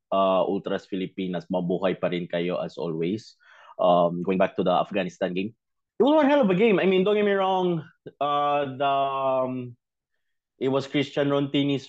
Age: 20-39